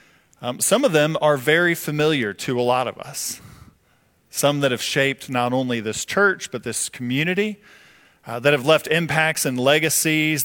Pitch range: 135-170 Hz